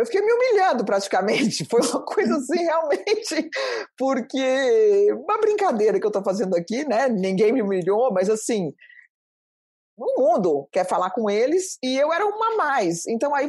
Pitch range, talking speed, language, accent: 200-295 Hz, 175 wpm, Portuguese, Brazilian